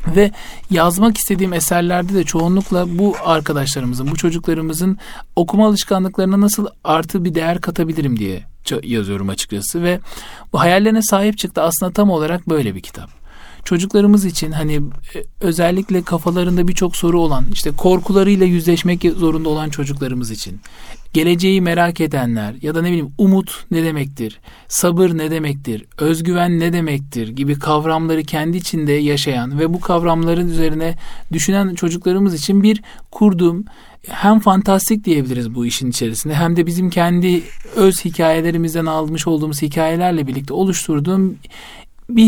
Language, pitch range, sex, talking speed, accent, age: Turkish, 150-185 Hz, male, 135 wpm, native, 40-59